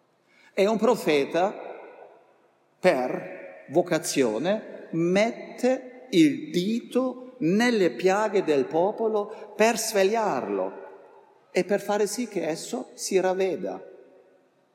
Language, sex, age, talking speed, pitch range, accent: Italian, male, 50-69, 90 wpm, 150-230 Hz, native